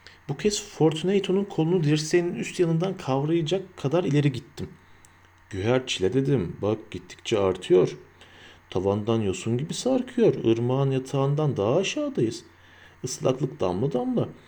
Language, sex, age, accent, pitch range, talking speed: Turkish, male, 40-59, native, 95-145 Hz, 115 wpm